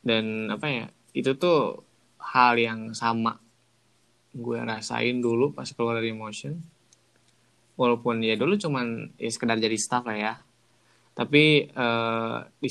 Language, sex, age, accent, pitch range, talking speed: Indonesian, male, 10-29, native, 115-130 Hz, 135 wpm